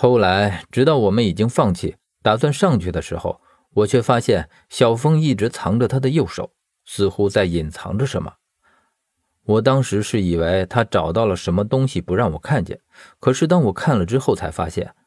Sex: male